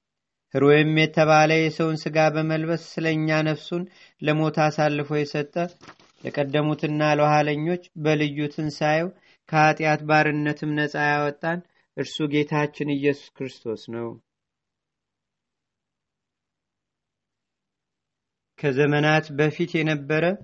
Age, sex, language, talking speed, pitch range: 40-59, male, Amharic, 75 wpm, 150-160 Hz